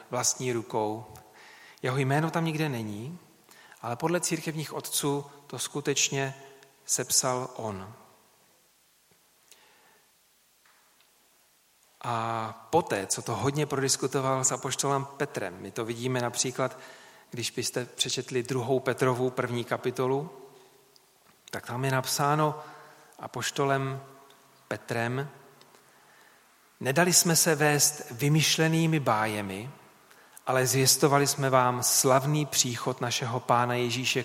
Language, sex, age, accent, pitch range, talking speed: Czech, male, 40-59, native, 120-140 Hz, 100 wpm